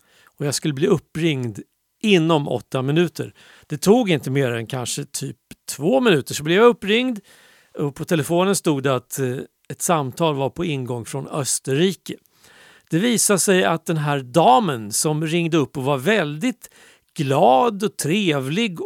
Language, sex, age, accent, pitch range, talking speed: Swedish, male, 50-69, native, 145-205 Hz, 160 wpm